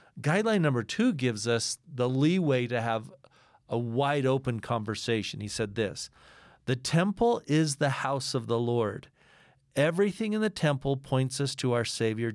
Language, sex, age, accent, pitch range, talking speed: English, male, 50-69, American, 120-155 Hz, 155 wpm